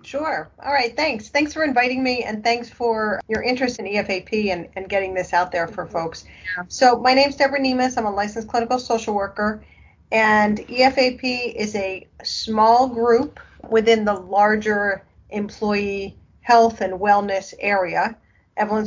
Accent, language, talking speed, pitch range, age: American, English, 160 wpm, 195-235 Hz, 40-59